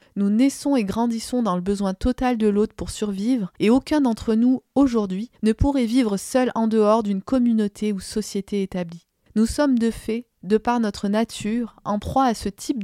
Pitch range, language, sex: 195-245 Hz, French, female